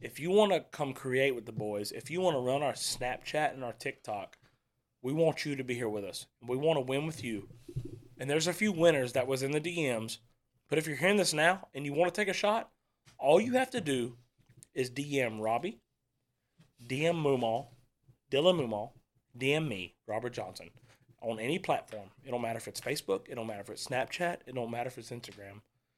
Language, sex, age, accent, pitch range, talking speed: English, male, 30-49, American, 125-185 Hz, 215 wpm